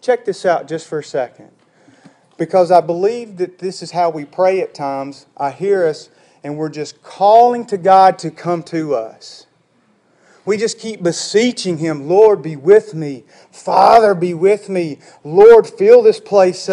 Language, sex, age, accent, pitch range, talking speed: English, male, 40-59, American, 165-245 Hz, 170 wpm